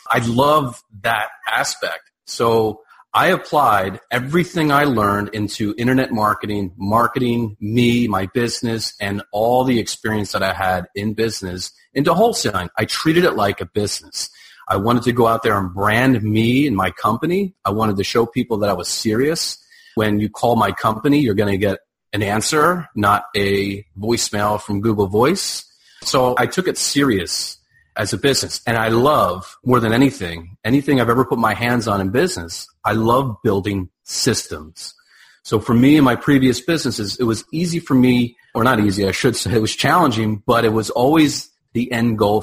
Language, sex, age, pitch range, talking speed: English, male, 30-49, 105-125 Hz, 180 wpm